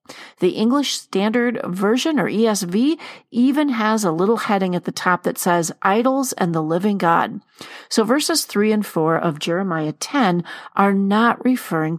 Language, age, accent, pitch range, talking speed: English, 40-59, American, 175-245 Hz, 160 wpm